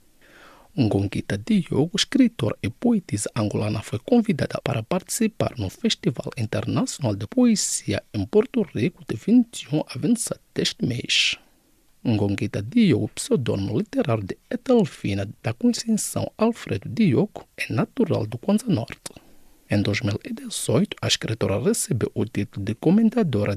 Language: English